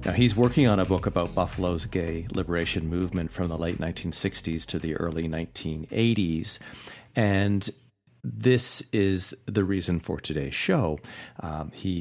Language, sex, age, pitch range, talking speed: English, male, 40-59, 80-110 Hz, 145 wpm